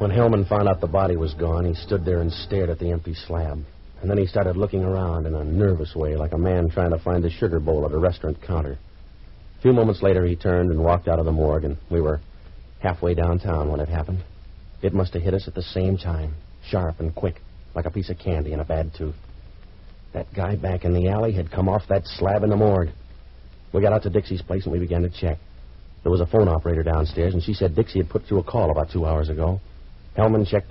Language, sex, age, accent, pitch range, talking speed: English, male, 50-69, American, 80-95 Hz, 250 wpm